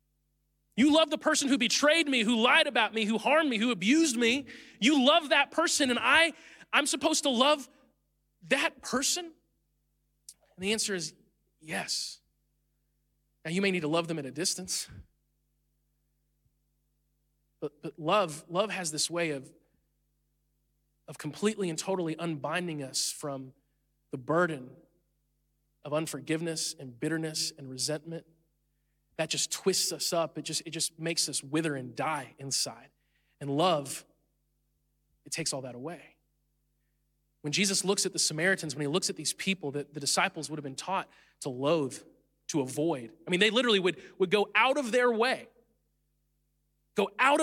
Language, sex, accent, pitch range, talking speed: English, male, American, 150-240 Hz, 160 wpm